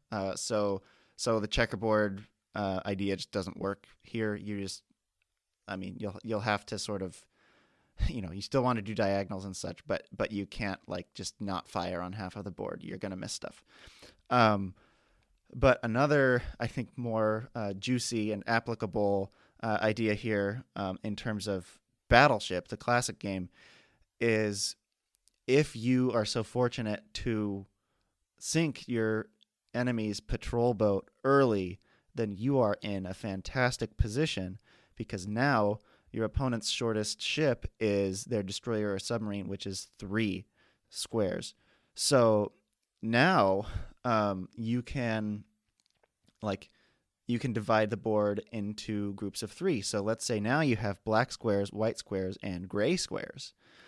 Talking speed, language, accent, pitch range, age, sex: 150 wpm, English, American, 100-115 Hz, 30-49, male